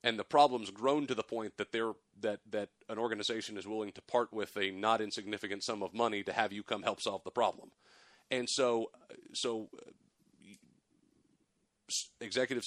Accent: American